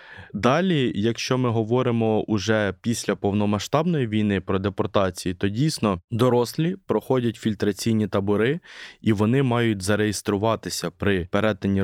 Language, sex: Ukrainian, male